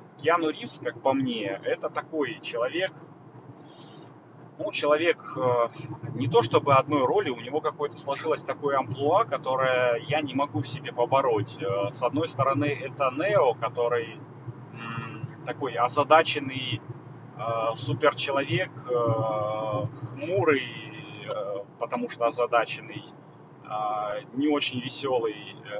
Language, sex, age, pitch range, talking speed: Russian, male, 30-49, 125-155 Hz, 100 wpm